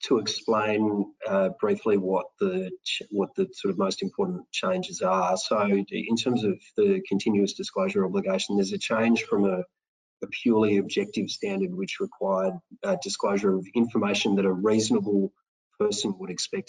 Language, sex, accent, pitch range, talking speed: English, male, Australian, 100-145 Hz, 155 wpm